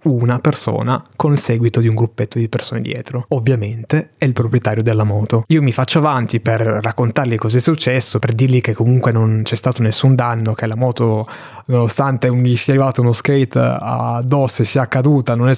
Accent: native